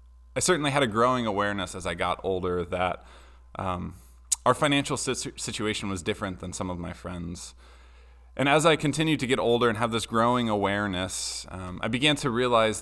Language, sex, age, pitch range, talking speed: English, male, 20-39, 90-120 Hz, 185 wpm